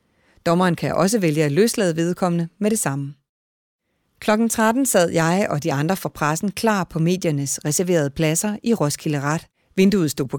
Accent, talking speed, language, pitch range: native, 170 wpm, Danish, 155-205 Hz